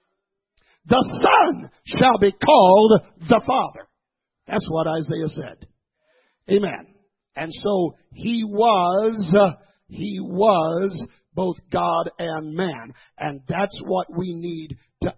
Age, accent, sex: 50-69, American, male